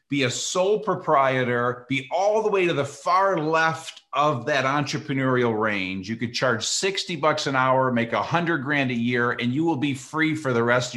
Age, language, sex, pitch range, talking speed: 40-59, English, male, 125-165 Hz, 205 wpm